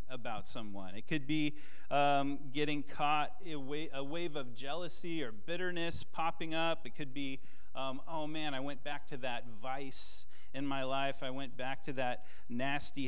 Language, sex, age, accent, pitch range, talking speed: English, male, 30-49, American, 110-155 Hz, 180 wpm